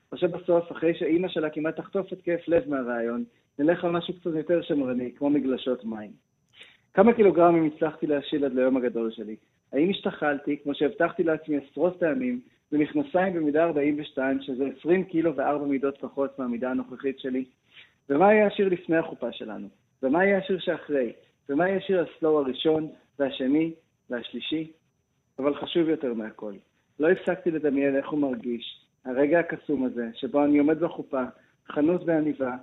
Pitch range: 130-165 Hz